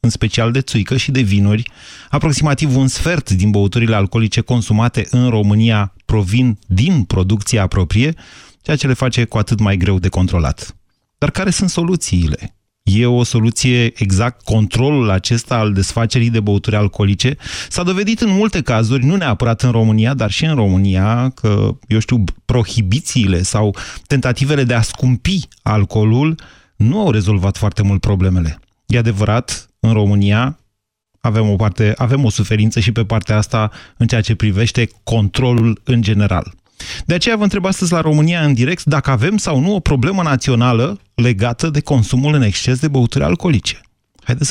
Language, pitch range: Romanian, 105-140 Hz